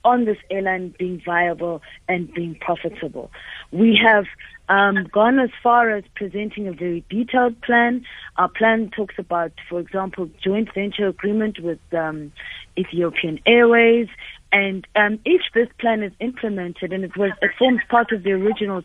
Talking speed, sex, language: 155 wpm, female, English